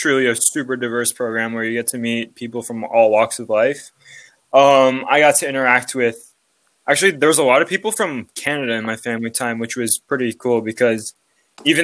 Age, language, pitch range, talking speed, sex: 20-39, English, 110-130 Hz, 205 wpm, male